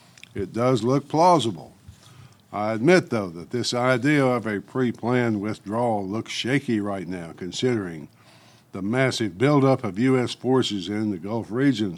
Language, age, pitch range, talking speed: English, 60-79, 105-130 Hz, 145 wpm